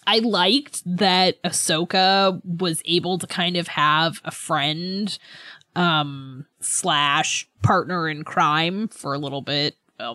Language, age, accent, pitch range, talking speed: English, 20-39, American, 160-260 Hz, 130 wpm